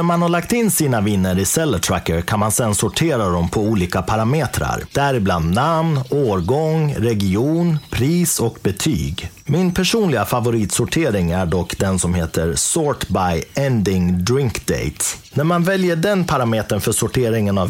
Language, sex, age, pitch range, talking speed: Swedish, male, 30-49, 90-135 Hz, 155 wpm